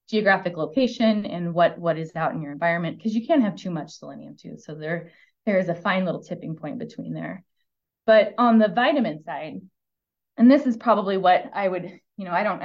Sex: female